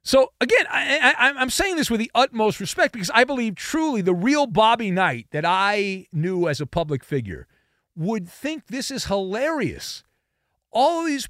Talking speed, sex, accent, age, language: 180 wpm, male, American, 40-59, English